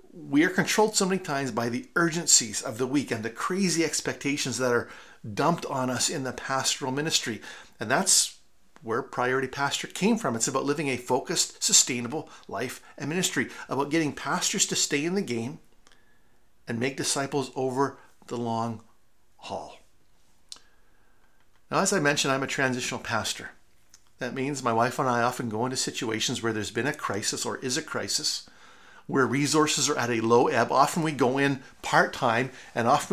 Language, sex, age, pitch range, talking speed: English, male, 50-69, 125-165 Hz, 175 wpm